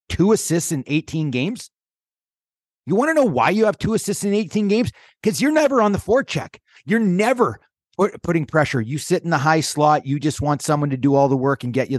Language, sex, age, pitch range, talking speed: English, male, 30-49, 145-200 Hz, 230 wpm